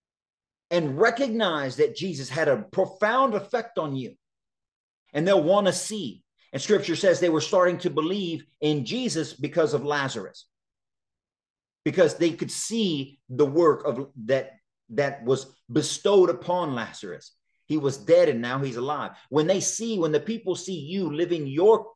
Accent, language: American, English